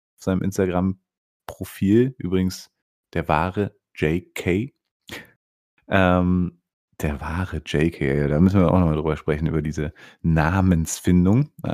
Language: German